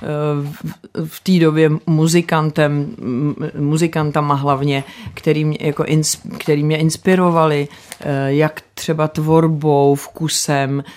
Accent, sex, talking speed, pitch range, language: native, female, 105 wpm, 145-180 Hz, Czech